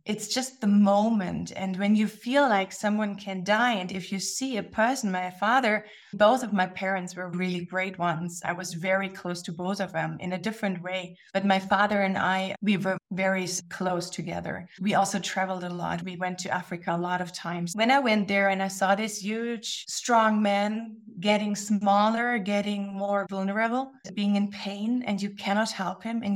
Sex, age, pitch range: female, 20-39, 190-215 Hz